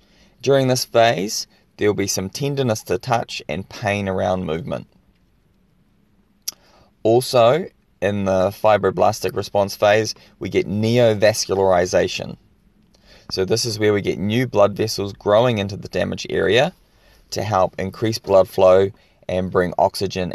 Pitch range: 95-115 Hz